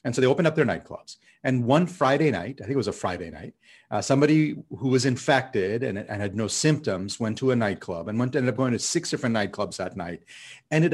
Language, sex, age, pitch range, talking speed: English, male, 40-59, 110-150 Hz, 245 wpm